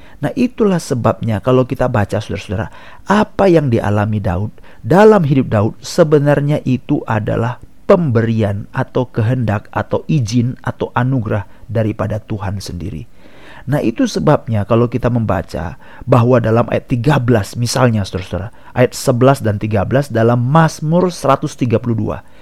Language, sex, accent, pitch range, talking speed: Indonesian, male, native, 110-165 Hz, 125 wpm